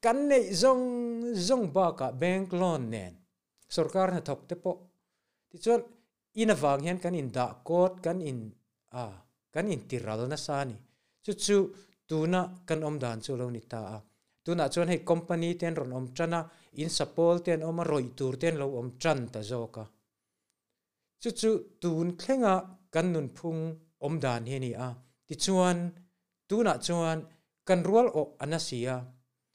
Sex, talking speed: male, 130 wpm